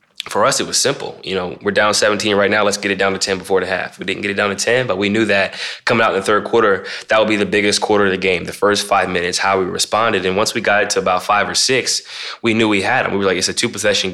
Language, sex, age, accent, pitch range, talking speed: English, male, 20-39, American, 95-105 Hz, 325 wpm